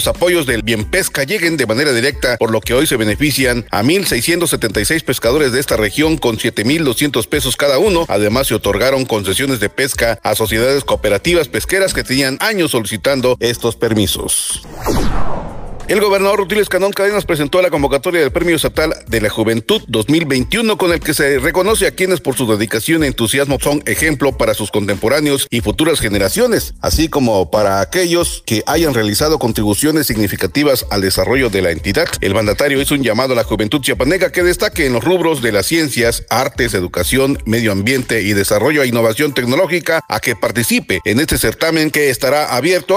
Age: 40-59